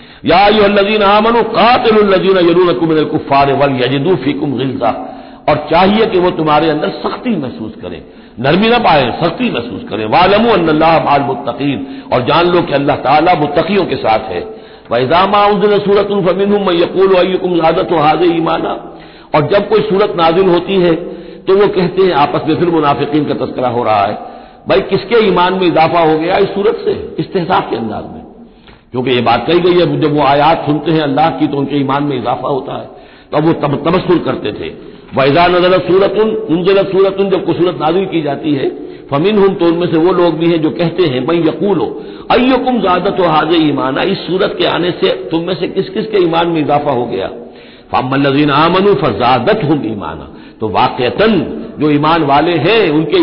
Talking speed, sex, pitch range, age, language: 185 wpm, male, 150-195 Hz, 60-79, Hindi